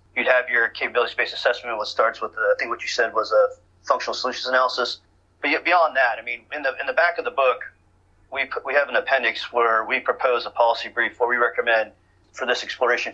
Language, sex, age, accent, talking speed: English, male, 30-49, American, 240 wpm